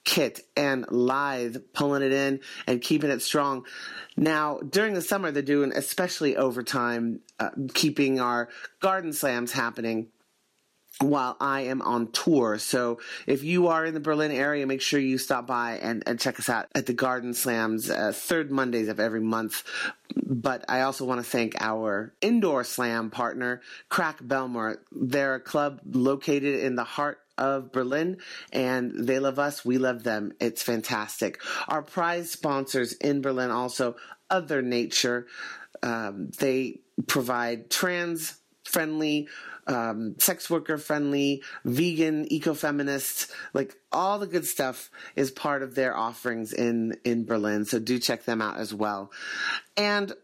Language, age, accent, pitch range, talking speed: English, 30-49, American, 125-150 Hz, 150 wpm